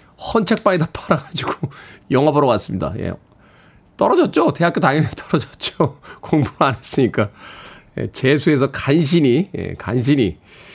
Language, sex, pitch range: Korean, male, 130-180 Hz